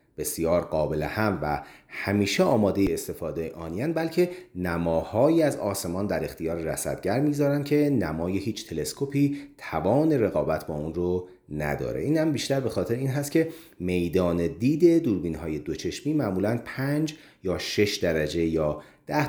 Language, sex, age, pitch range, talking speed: Persian, male, 30-49, 85-145 Hz, 140 wpm